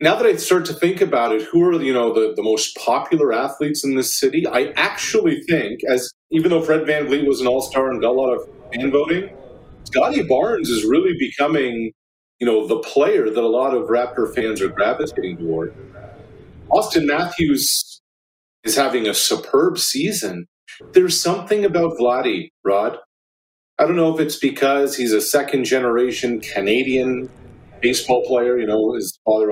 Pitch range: 120-180 Hz